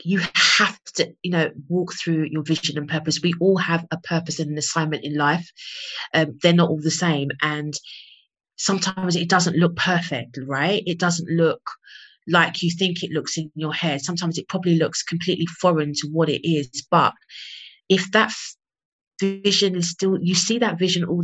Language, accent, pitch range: English, British, 155-180 Hz